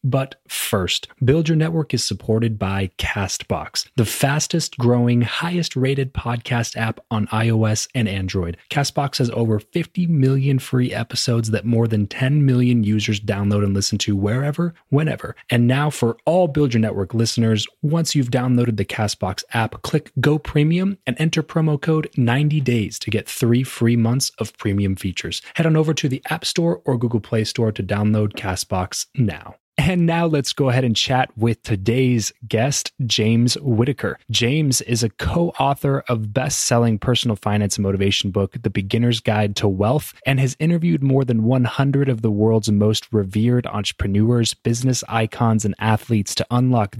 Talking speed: 165 wpm